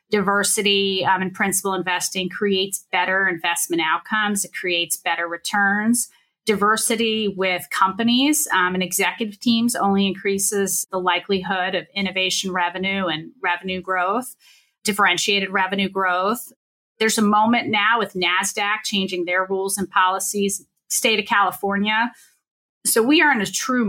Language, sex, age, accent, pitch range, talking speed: English, female, 30-49, American, 185-225 Hz, 135 wpm